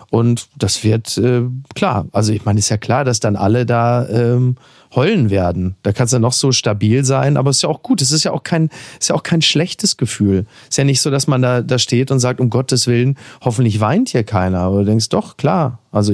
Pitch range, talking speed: 110-135 Hz, 255 wpm